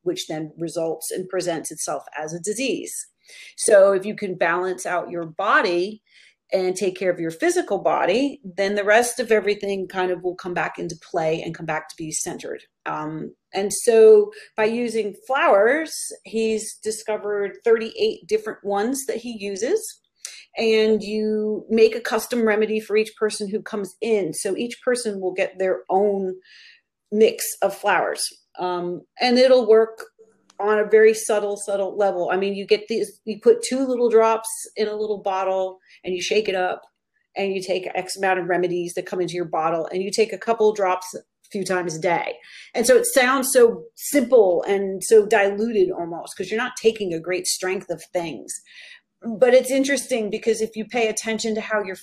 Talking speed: 185 wpm